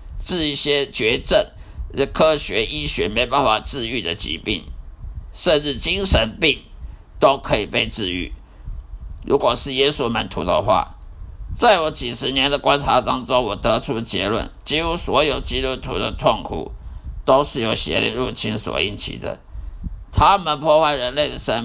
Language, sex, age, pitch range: Chinese, male, 50-69, 95-150 Hz